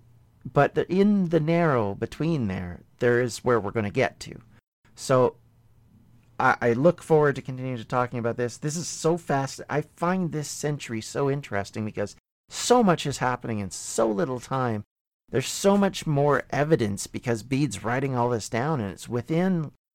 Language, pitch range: English, 115-155 Hz